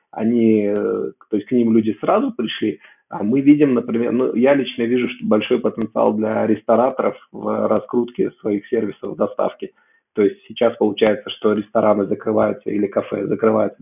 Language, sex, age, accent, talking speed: Russian, male, 20-39, native, 155 wpm